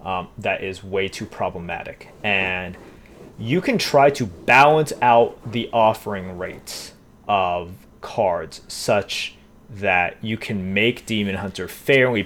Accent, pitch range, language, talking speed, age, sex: American, 100-155 Hz, English, 125 wpm, 30-49, male